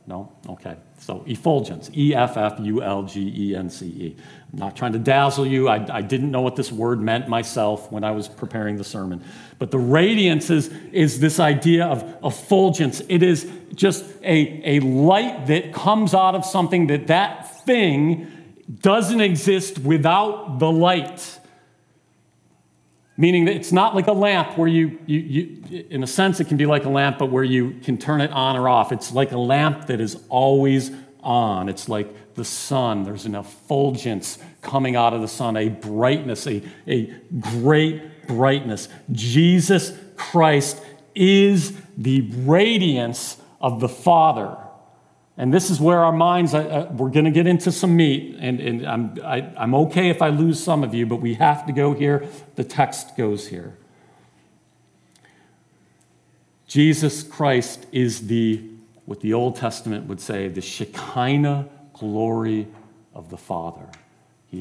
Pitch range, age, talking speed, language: 110-165 Hz, 40-59, 155 wpm, English